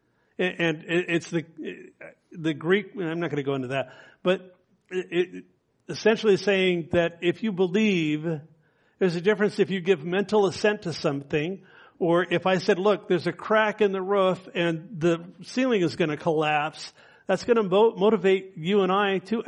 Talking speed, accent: 175 wpm, American